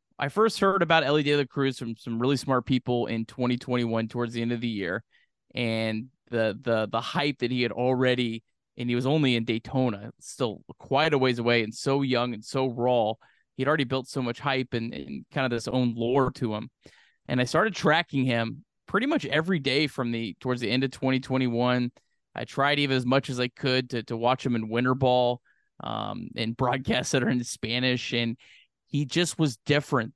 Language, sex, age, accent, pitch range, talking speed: English, male, 20-39, American, 120-140 Hz, 210 wpm